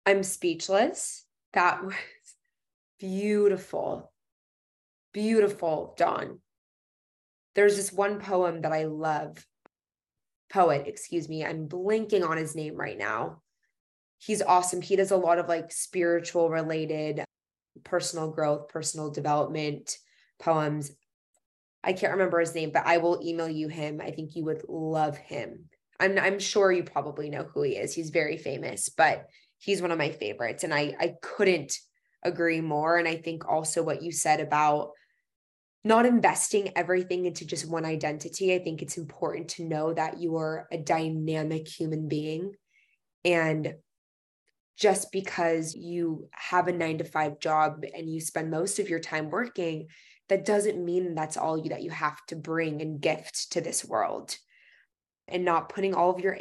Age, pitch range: 20-39, 155-185 Hz